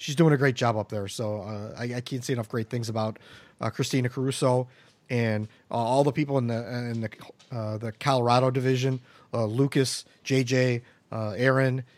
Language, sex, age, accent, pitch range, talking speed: English, male, 40-59, American, 115-140 Hz, 190 wpm